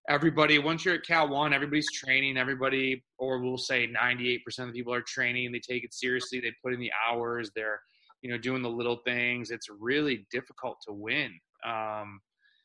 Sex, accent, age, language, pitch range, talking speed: male, American, 20-39, English, 120-145 Hz, 190 wpm